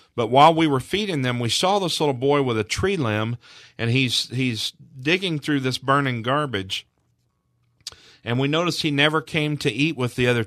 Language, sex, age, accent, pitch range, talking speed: English, male, 40-59, American, 110-140 Hz, 195 wpm